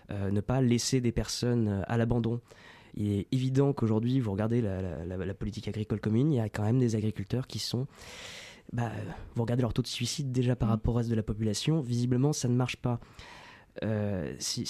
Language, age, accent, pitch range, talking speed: French, 20-39, French, 105-125 Hz, 210 wpm